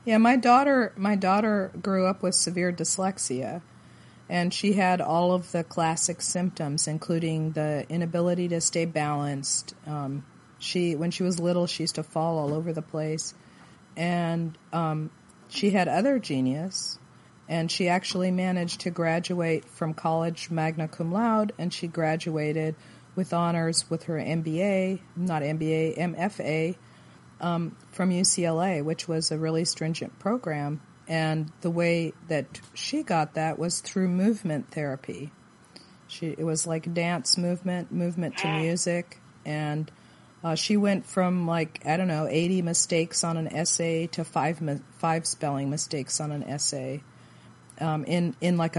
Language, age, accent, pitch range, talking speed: English, 40-59, American, 155-180 Hz, 150 wpm